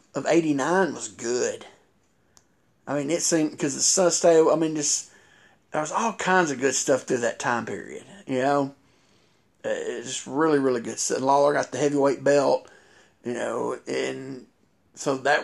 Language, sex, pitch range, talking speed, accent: English, male, 145-170 Hz, 165 wpm, American